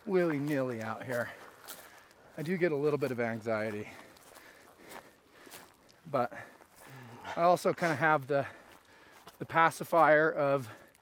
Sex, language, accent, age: male, English, American, 30-49